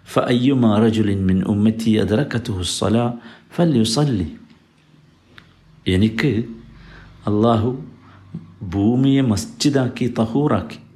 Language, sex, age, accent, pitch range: Malayalam, male, 50-69, native, 95-125 Hz